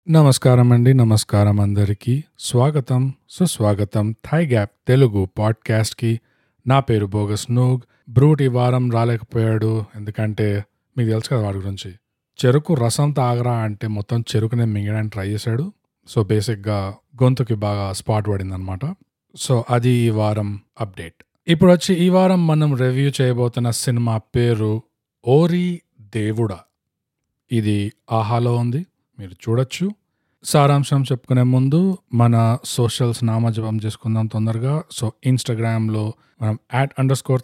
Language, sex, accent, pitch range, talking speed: Telugu, male, native, 110-135 Hz, 125 wpm